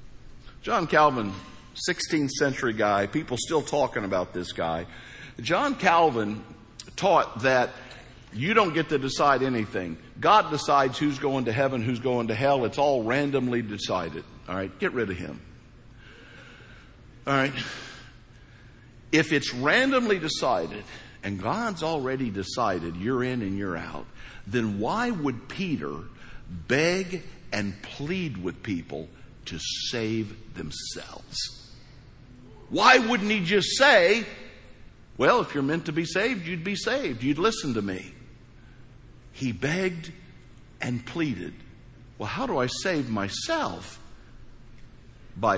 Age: 60-79